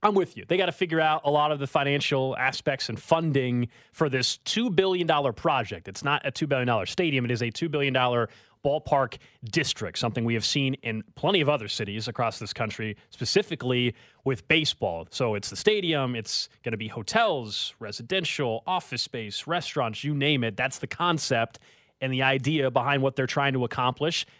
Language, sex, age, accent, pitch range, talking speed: English, male, 30-49, American, 120-155 Hz, 190 wpm